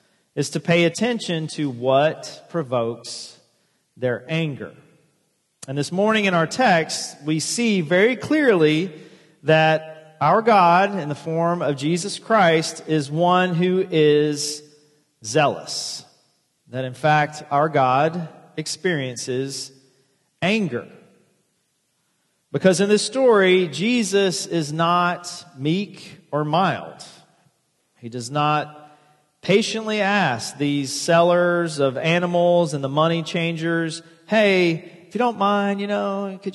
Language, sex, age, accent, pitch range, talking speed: English, male, 40-59, American, 150-185 Hz, 115 wpm